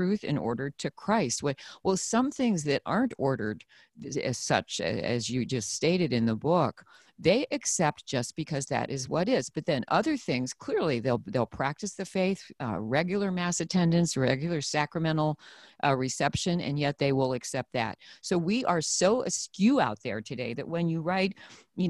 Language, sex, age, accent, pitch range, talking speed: English, female, 40-59, American, 135-185 Hz, 180 wpm